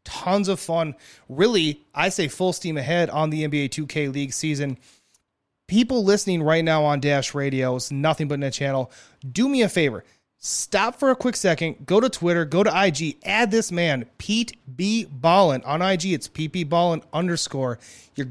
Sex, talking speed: male, 180 wpm